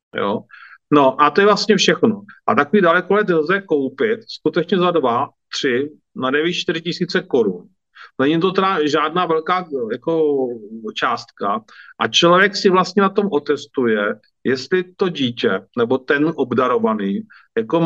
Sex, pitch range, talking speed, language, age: male, 150-185 Hz, 140 wpm, Czech, 40-59